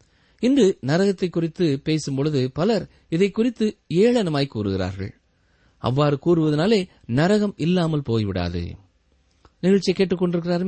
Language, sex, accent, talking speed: Tamil, male, native, 85 wpm